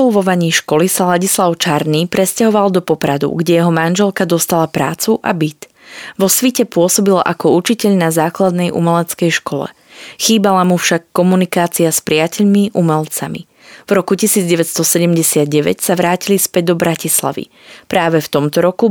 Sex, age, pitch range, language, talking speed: female, 20-39, 160-195 Hz, Slovak, 135 wpm